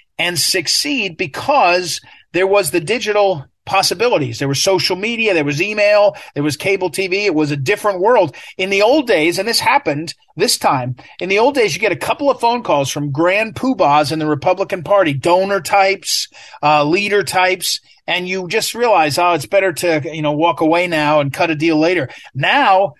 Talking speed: 195 wpm